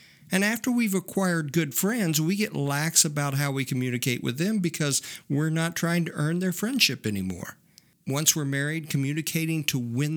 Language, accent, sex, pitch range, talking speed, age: English, American, male, 125-170 Hz, 175 wpm, 50-69